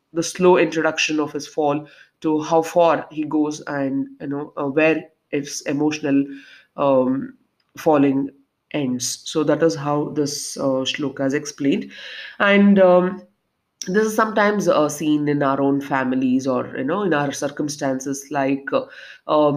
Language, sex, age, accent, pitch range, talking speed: English, female, 30-49, Indian, 140-170 Hz, 155 wpm